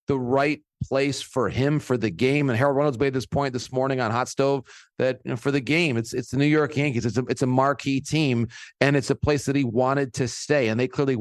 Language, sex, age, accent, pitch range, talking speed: English, male, 30-49, American, 125-145 Hz, 260 wpm